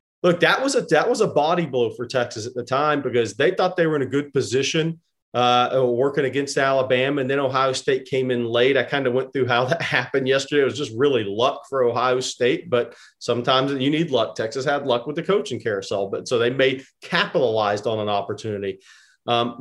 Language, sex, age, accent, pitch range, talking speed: English, male, 40-59, American, 120-155 Hz, 220 wpm